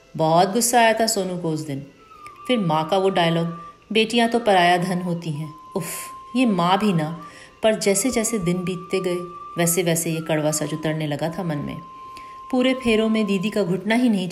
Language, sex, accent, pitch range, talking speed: Hindi, female, native, 165-225 Hz, 200 wpm